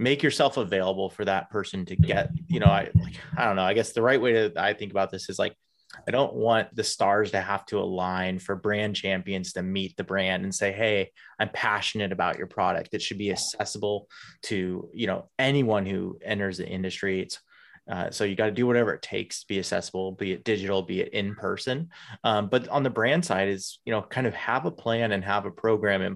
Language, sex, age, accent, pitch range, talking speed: English, male, 20-39, American, 95-115 Hz, 230 wpm